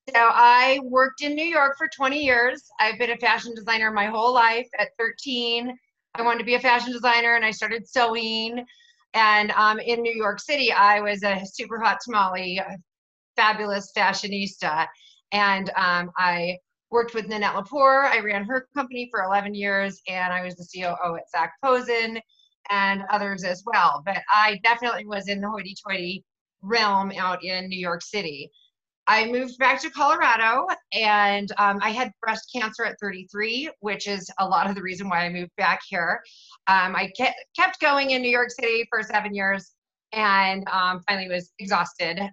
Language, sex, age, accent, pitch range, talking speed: English, female, 30-49, American, 190-240 Hz, 175 wpm